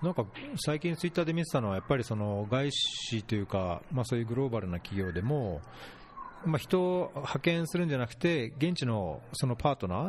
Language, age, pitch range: Japanese, 40-59, 100-140 Hz